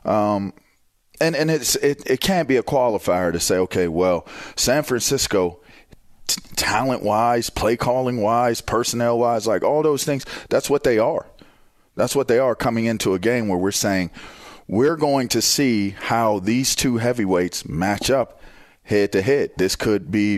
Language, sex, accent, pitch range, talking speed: English, male, American, 90-115 Hz, 170 wpm